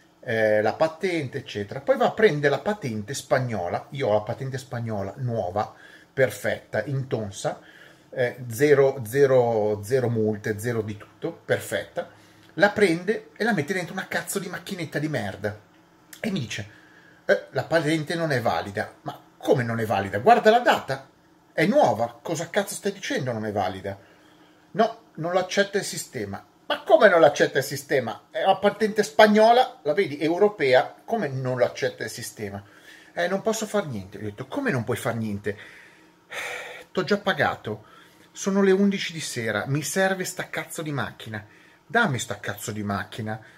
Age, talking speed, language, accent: 30-49, 165 wpm, Italian, native